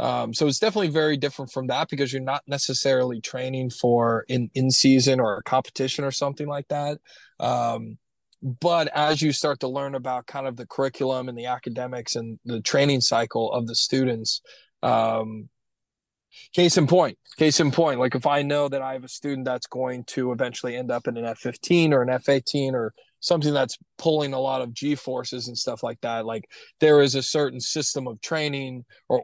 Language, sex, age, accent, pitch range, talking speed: English, male, 20-39, American, 125-145 Hz, 195 wpm